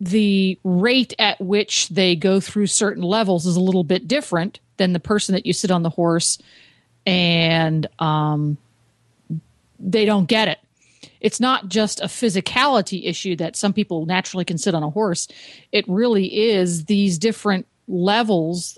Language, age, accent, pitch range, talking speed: English, 40-59, American, 170-210 Hz, 160 wpm